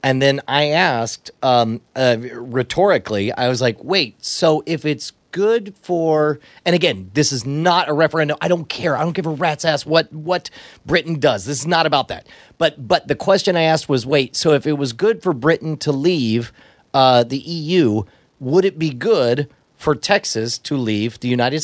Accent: American